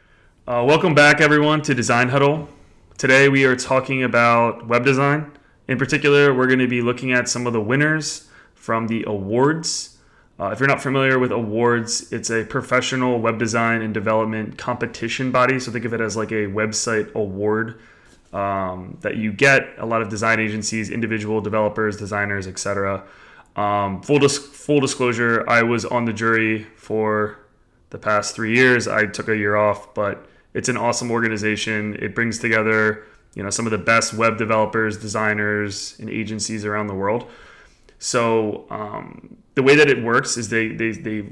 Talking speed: 170 wpm